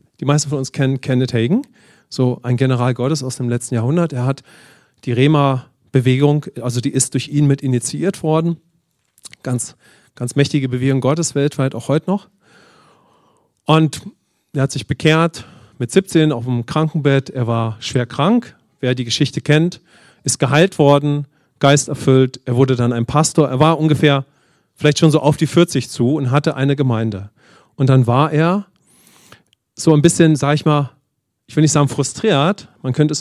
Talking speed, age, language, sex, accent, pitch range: 170 wpm, 40-59, English, male, German, 130-155 Hz